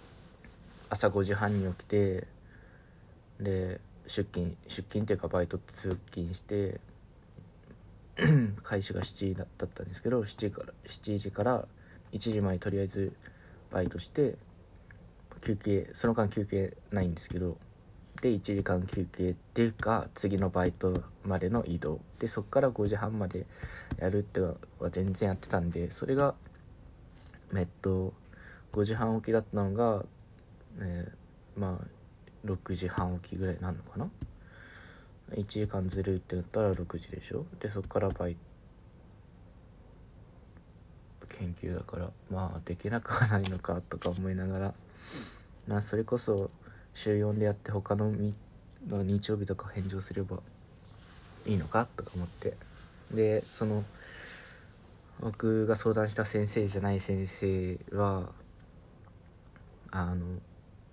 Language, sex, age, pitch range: Japanese, male, 20-39, 90-105 Hz